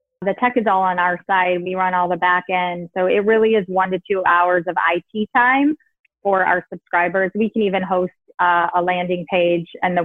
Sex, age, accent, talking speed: female, 20-39, American, 220 wpm